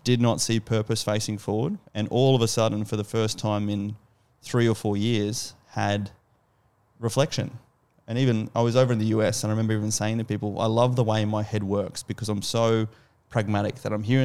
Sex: male